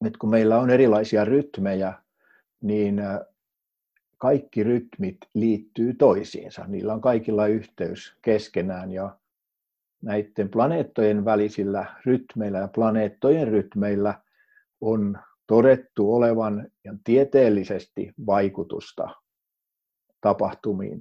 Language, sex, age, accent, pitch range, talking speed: Finnish, male, 60-79, native, 105-125 Hz, 90 wpm